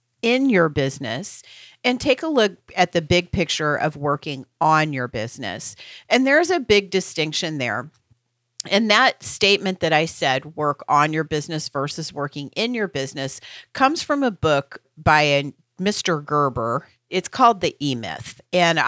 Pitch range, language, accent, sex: 140-180 Hz, English, American, female